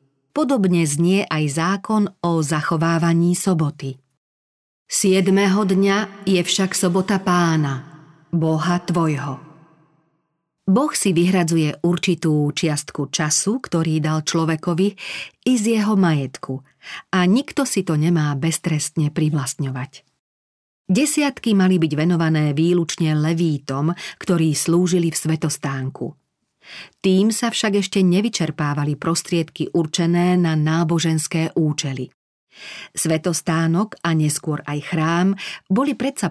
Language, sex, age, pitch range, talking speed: Slovak, female, 40-59, 155-190 Hz, 100 wpm